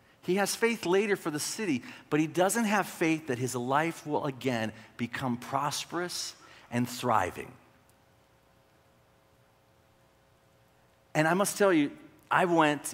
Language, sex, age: English, male, 40-59